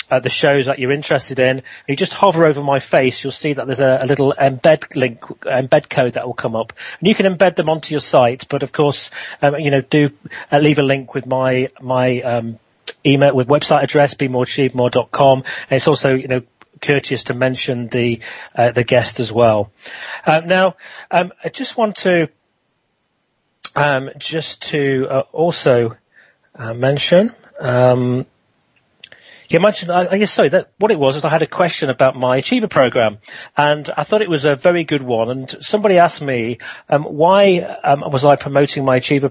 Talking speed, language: 190 wpm, English